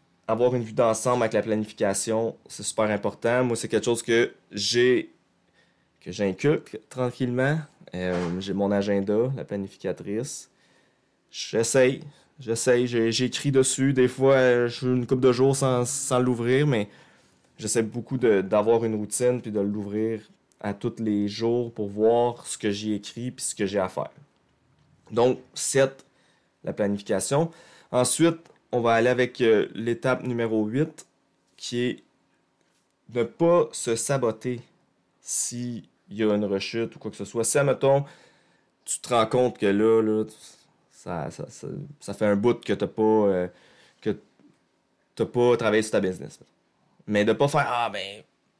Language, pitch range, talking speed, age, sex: French, 105-130 Hz, 165 wpm, 20-39, male